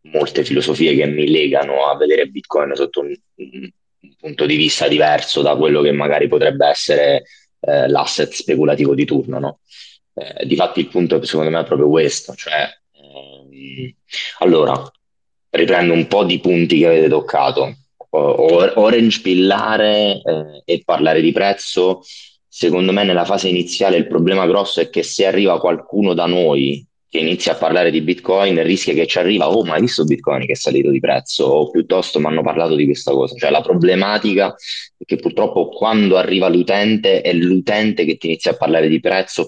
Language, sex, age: Italian, male, 30-49